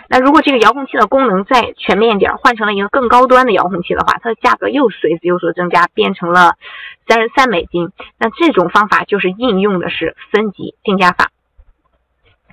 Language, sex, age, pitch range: Chinese, female, 20-39, 180-270 Hz